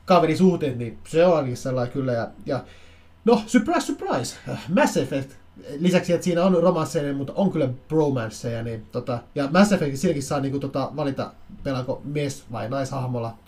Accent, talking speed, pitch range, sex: native, 160 wpm, 115-155 Hz, male